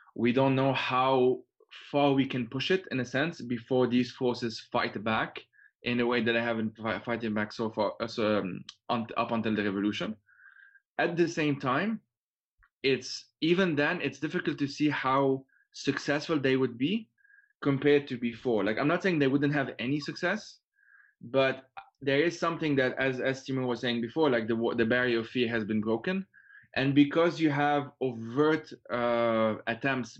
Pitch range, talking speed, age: 115-140 Hz, 175 wpm, 20-39